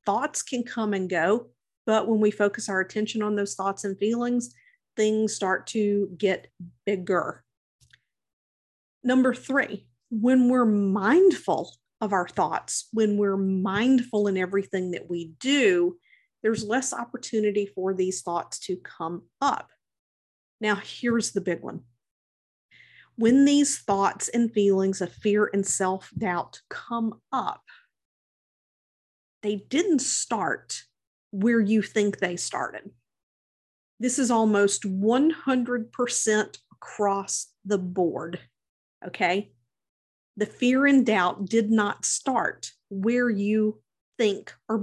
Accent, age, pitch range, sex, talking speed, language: American, 50-69, 195-240 Hz, female, 120 wpm, English